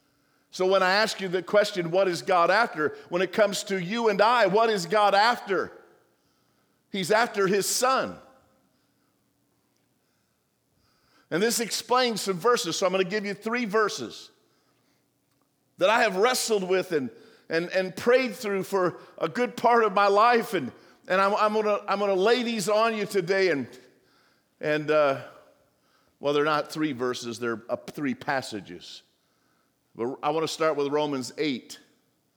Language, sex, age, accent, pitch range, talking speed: English, male, 50-69, American, 160-215 Hz, 160 wpm